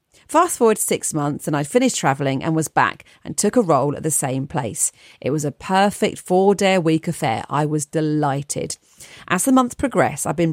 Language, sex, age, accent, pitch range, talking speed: English, female, 40-59, British, 150-205 Hz, 205 wpm